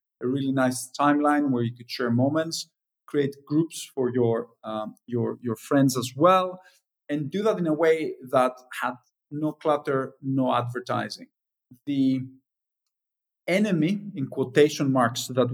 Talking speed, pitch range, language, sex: 145 wpm, 125-165 Hz, English, male